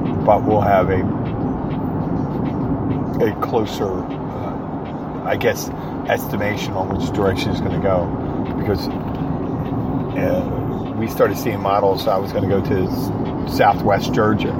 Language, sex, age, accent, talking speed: English, male, 40-59, American, 130 wpm